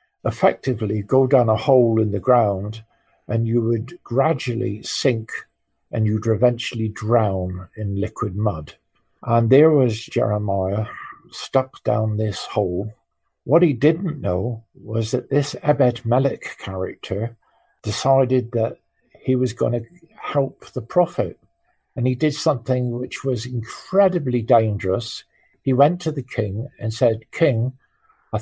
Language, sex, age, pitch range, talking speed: English, male, 50-69, 110-135 Hz, 135 wpm